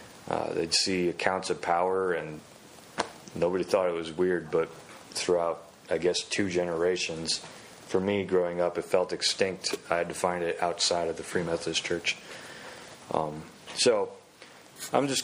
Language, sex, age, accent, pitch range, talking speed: English, male, 30-49, American, 90-115 Hz, 160 wpm